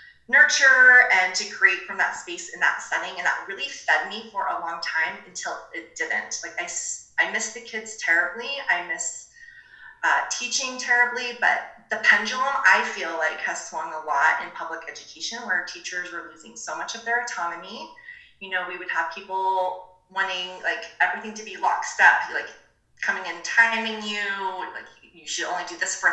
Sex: female